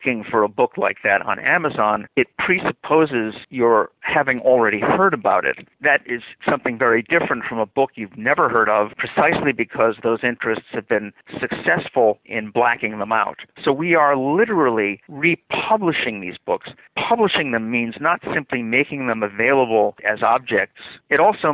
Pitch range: 115-145 Hz